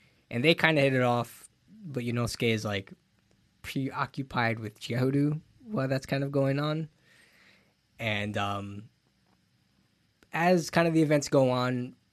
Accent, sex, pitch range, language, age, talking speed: American, male, 95-120 Hz, English, 20-39, 155 wpm